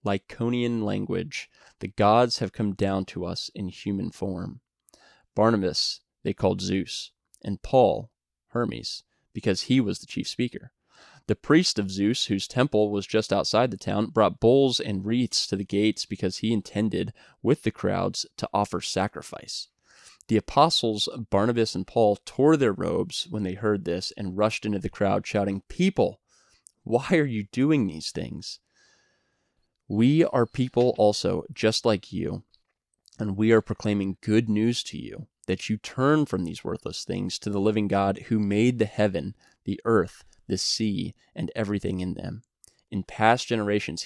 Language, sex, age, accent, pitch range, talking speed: English, male, 20-39, American, 100-115 Hz, 160 wpm